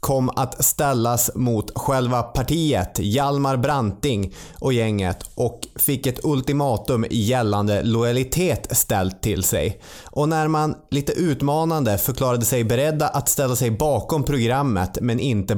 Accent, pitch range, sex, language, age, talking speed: native, 105-140 Hz, male, Swedish, 20-39, 130 wpm